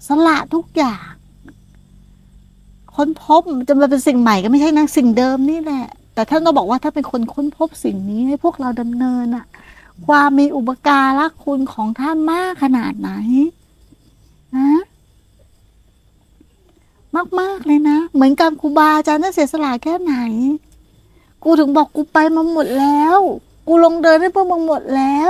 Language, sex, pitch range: Thai, female, 260-335 Hz